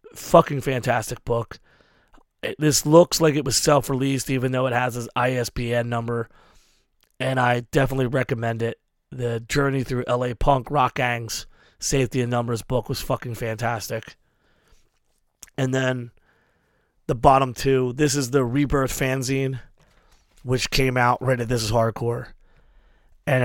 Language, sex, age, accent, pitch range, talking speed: English, male, 30-49, American, 120-135 Hz, 140 wpm